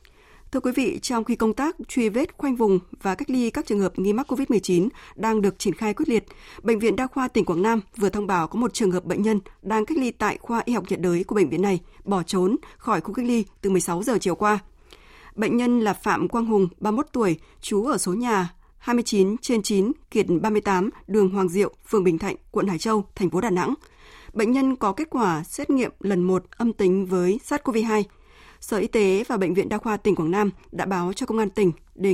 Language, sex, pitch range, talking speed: Vietnamese, female, 190-235 Hz, 235 wpm